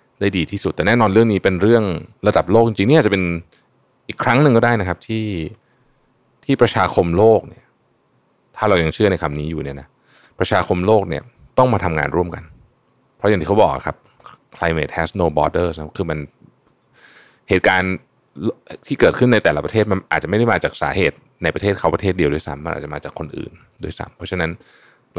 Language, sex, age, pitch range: Thai, male, 20-39, 80-110 Hz